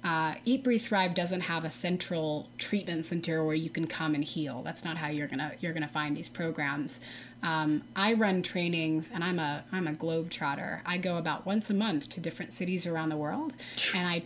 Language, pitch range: English, 160-195 Hz